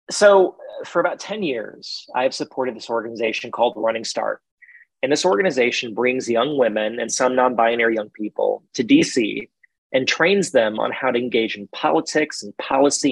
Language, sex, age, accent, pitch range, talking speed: English, male, 30-49, American, 125-175 Hz, 170 wpm